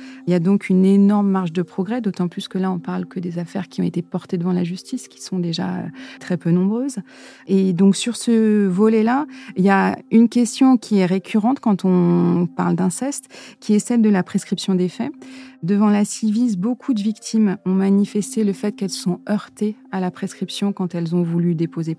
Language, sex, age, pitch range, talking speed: French, female, 30-49, 185-220 Hz, 215 wpm